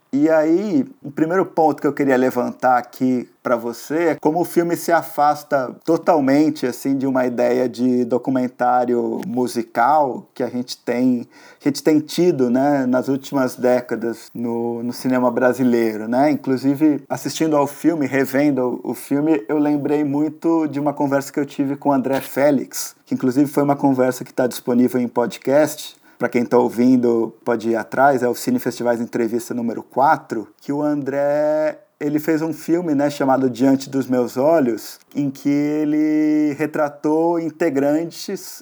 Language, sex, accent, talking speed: Portuguese, male, Brazilian, 160 wpm